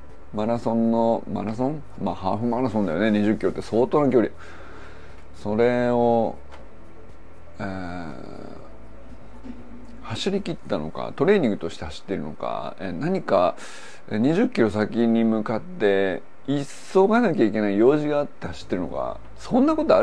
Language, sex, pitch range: Japanese, male, 85-120 Hz